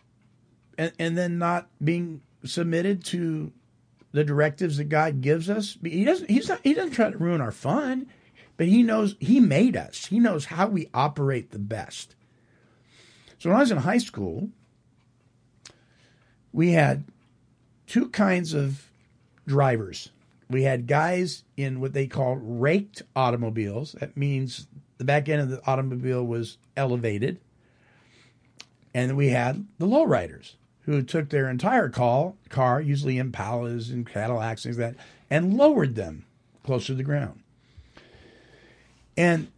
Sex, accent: male, American